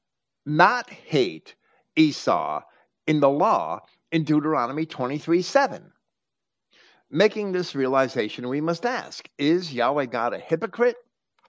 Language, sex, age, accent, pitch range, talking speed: English, male, 50-69, American, 120-170 Hz, 110 wpm